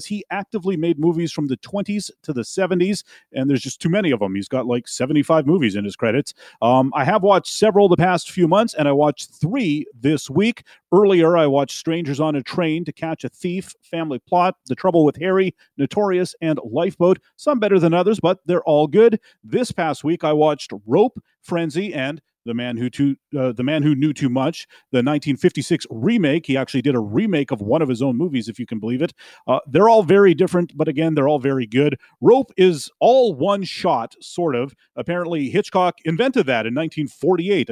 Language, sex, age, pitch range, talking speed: English, male, 40-59, 135-180 Hz, 205 wpm